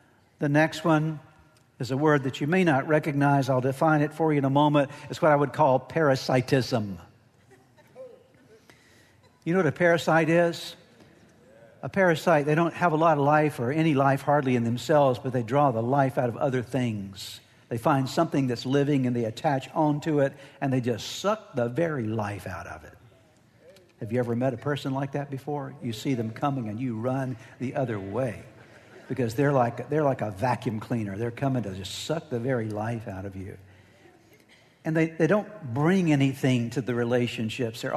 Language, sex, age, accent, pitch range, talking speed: English, male, 60-79, American, 120-145 Hz, 195 wpm